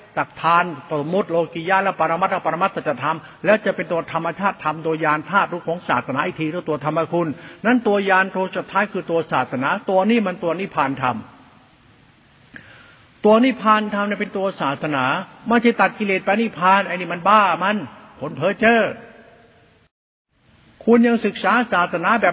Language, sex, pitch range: Thai, male, 165-205 Hz